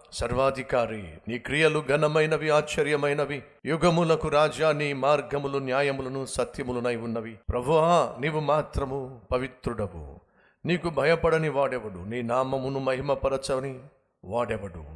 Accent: native